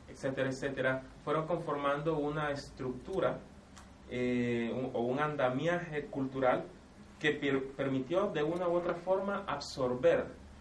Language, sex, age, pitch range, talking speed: Spanish, male, 30-49, 115-140 Hz, 120 wpm